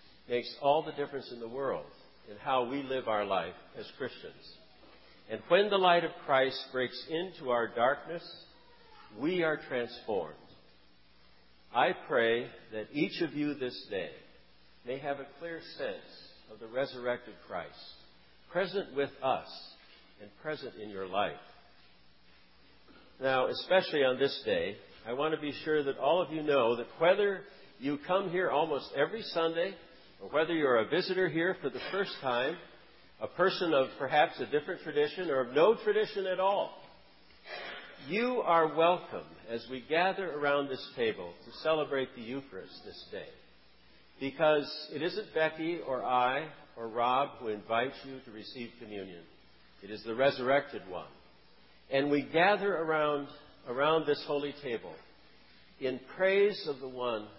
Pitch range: 115-165 Hz